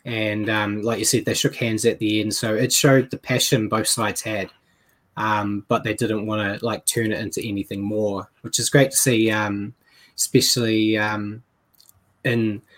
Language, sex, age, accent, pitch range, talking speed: English, male, 20-39, Australian, 105-125 Hz, 190 wpm